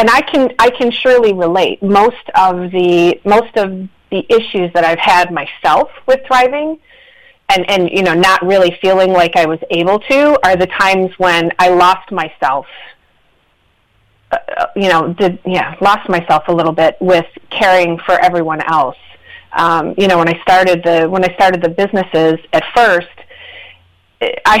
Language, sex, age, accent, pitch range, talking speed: English, female, 30-49, American, 170-200 Hz, 165 wpm